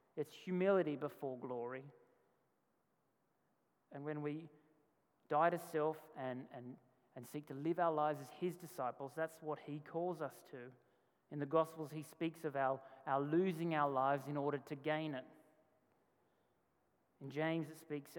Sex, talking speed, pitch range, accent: male, 155 wpm, 140-170 Hz, Australian